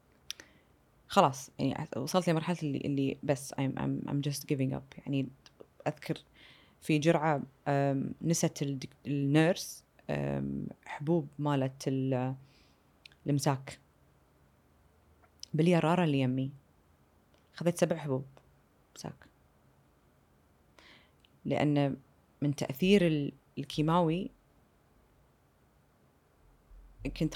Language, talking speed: Arabic, 75 wpm